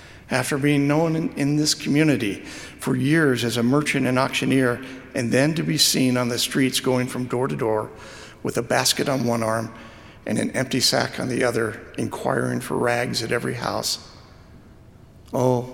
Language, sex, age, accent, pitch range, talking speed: English, male, 60-79, American, 110-130 Hz, 175 wpm